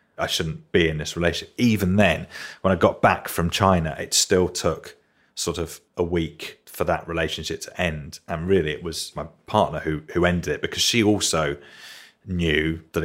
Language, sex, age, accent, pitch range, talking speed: English, male, 30-49, British, 80-90 Hz, 190 wpm